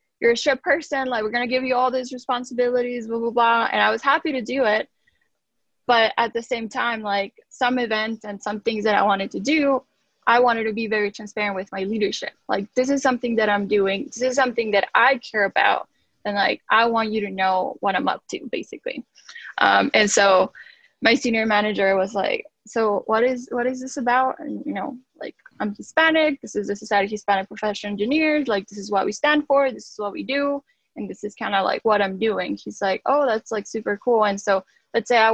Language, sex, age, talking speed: English, female, 10-29, 230 wpm